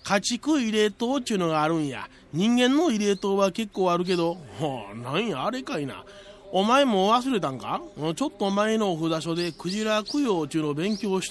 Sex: male